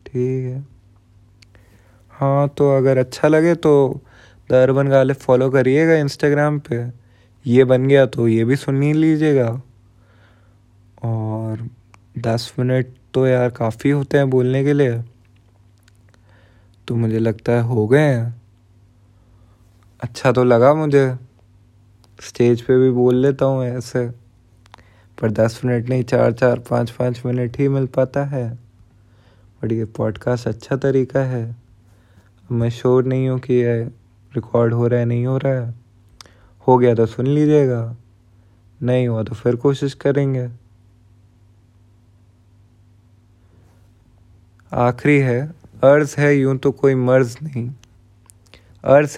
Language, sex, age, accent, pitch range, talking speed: Hindi, male, 20-39, native, 105-130 Hz, 125 wpm